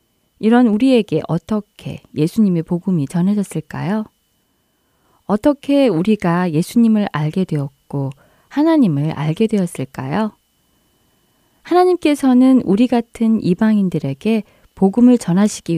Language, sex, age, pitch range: Korean, female, 20-39, 155-245 Hz